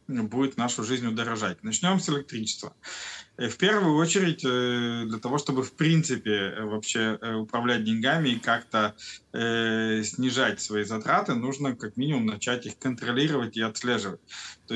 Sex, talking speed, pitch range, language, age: male, 130 wpm, 110-130 Hz, Russian, 20-39